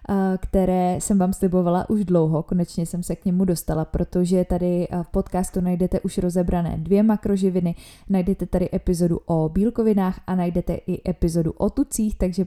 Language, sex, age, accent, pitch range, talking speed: Czech, female, 20-39, native, 180-200 Hz, 160 wpm